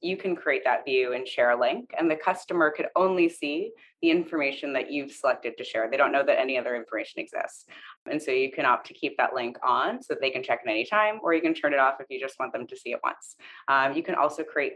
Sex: female